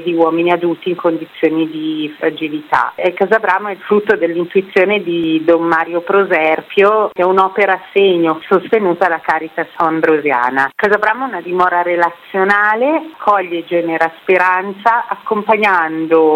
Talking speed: 130 wpm